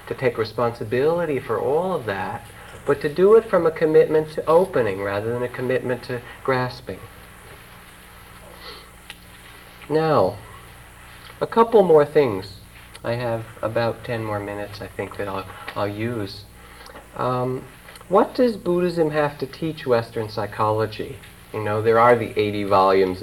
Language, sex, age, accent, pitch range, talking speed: English, male, 50-69, American, 105-145 Hz, 140 wpm